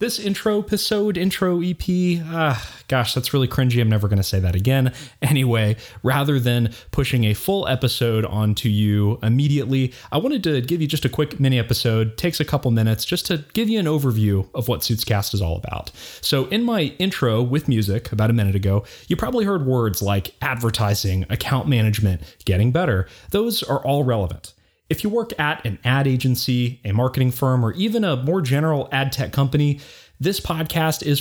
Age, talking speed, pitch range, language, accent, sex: 30-49, 190 wpm, 110-160 Hz, English, American, male